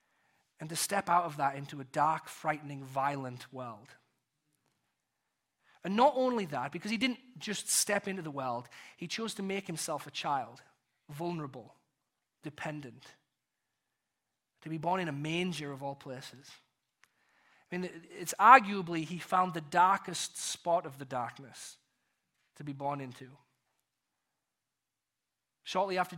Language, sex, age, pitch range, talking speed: English, male, 30-49, 145-190 Hz, 140 wpm